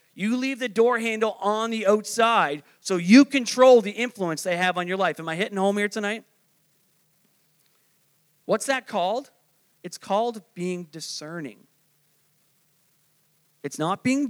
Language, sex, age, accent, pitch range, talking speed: English, male, 40-59, American, 170-230 Hz, 145 wpm